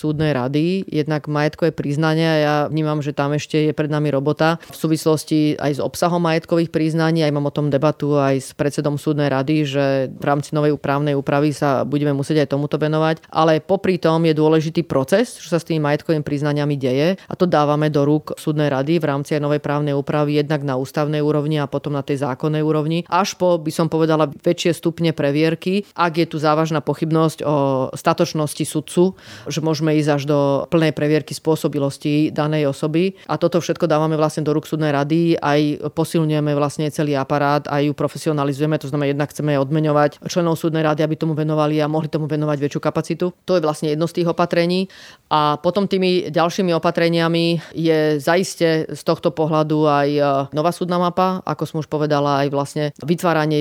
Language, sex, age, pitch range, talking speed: Slovak, female, 30-49, 145-165 Hz, 185 wpm